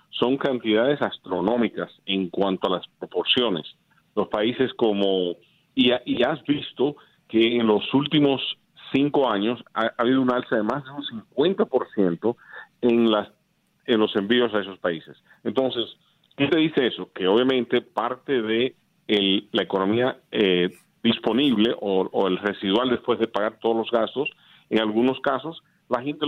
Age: 50-69